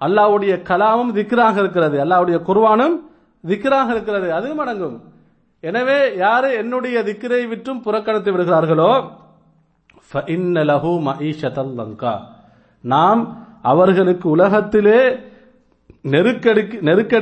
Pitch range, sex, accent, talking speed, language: 165-225 Hz, male, Indian, 130 wpm, English